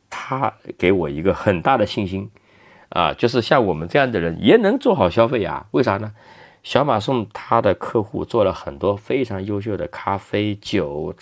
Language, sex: Chinese, male